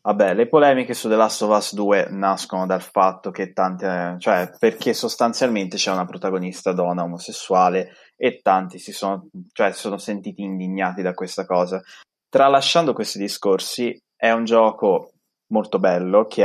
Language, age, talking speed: Italian, 20-39, 155 wpm